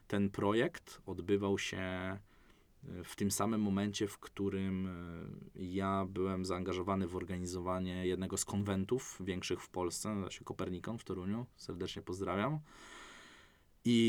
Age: 20-39